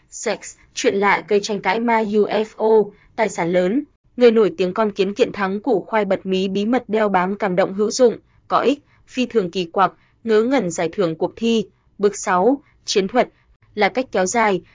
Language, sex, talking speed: Vietnamese, female, 205 wpm